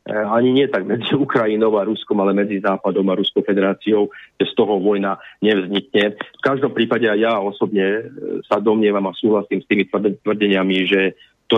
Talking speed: 170 wpm